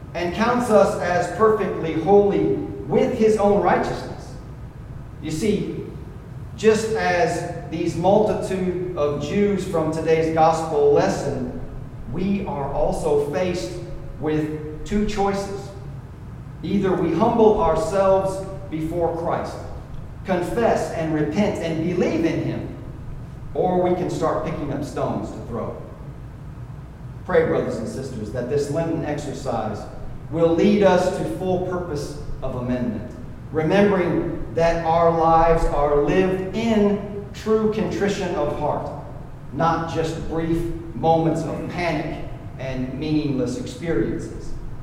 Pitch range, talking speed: 145-185 Hz, 115 wpm